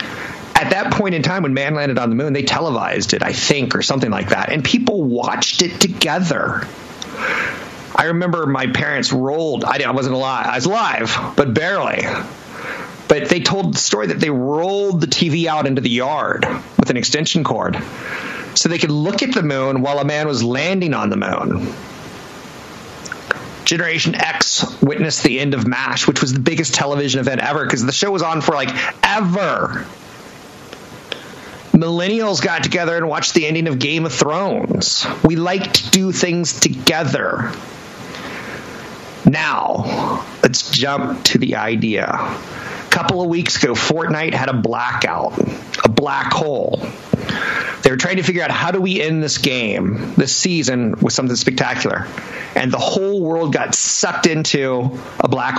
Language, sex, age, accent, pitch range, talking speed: English, male, 30-49, American, 135-175 Hz, 165 wpm